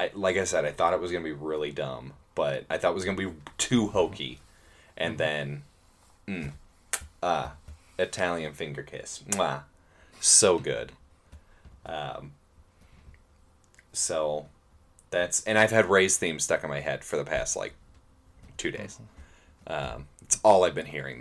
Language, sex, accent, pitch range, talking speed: English, male, American, 75-100 Hz, 155 wpm